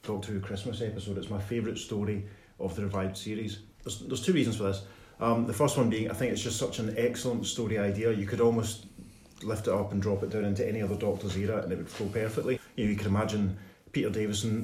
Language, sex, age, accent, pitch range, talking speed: English, male, 30-49, British, 100-120 Hz, 240 wpm